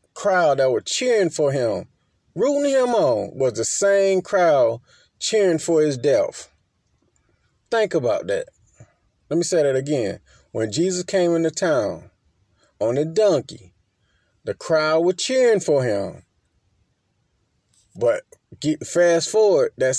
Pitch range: 140-175 Hz